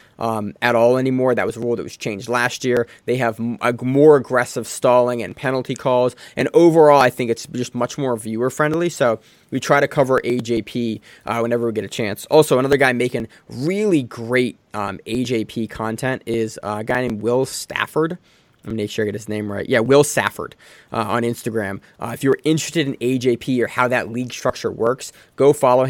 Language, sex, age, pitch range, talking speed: English, male, 20-39, 115-130 Hz, 210 wpm